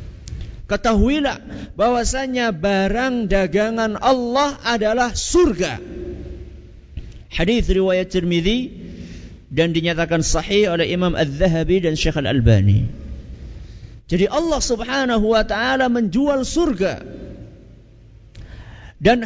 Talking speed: 85 wpm